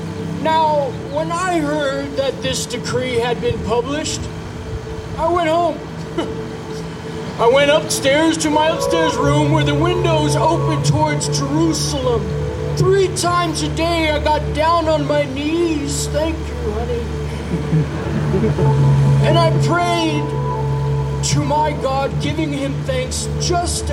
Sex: male